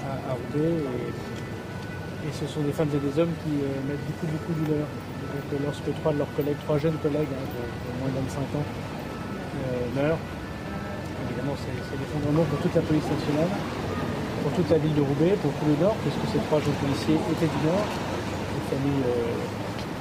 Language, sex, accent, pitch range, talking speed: French, male, French, 140-160 Hz, 200 wpm